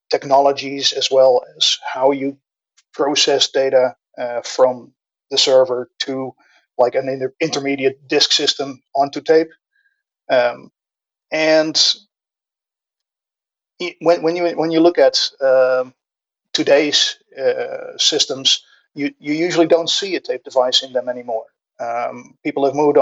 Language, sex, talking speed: English, male, 130 wpm